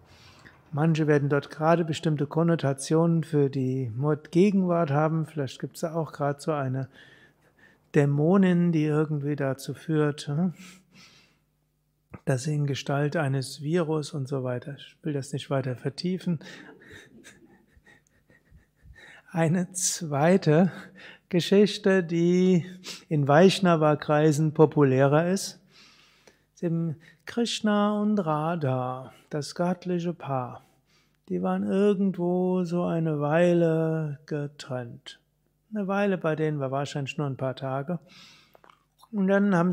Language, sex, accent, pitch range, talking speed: German, male, German, 140-175 Hz, 110 wpm